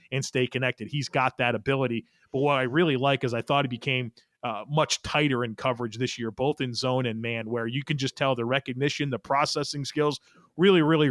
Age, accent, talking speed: 30-49, American, 220 wpm